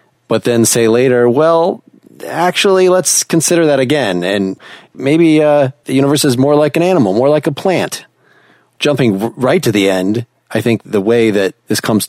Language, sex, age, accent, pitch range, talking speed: English, male, 40-59, American, 105-130 Hz, 185 wpm